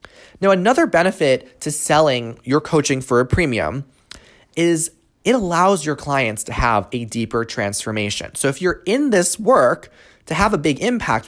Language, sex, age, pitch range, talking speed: English, male, 20-39, 120-185 Hz, 165 wpm